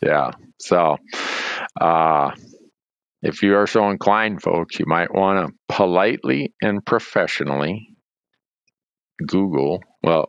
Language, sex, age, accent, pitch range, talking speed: English, male, 50-69, American, 75-95 Hz, 105 wpm